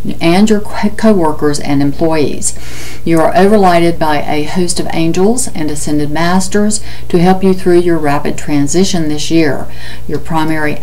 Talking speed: 155 wpm